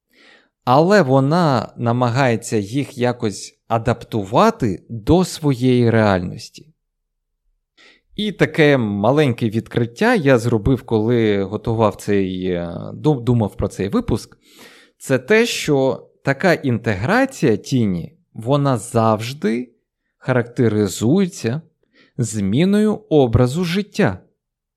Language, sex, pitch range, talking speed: Ukrainian, male, 110-165 Hz, 80 wpm